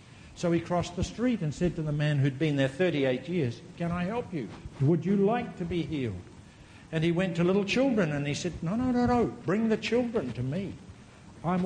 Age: 60-79